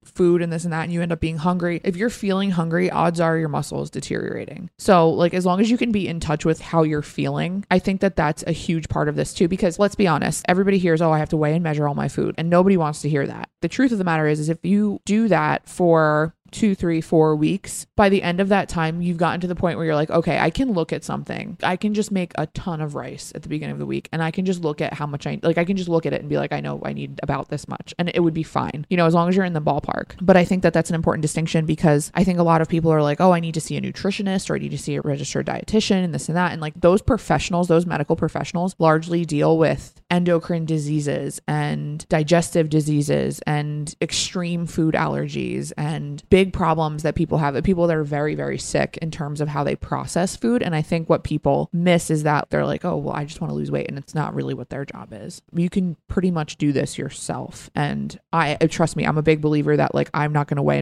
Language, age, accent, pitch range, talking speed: English, 20-39, American, 150-180 Hz, 275 wpm